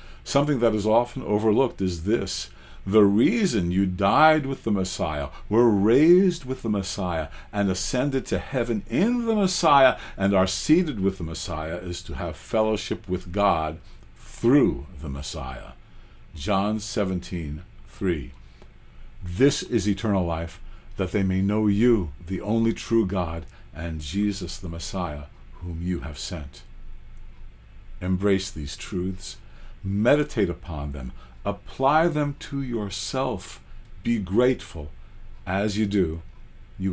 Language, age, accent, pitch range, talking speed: English, 60-79, American, 85-110 Hz, 130 wpm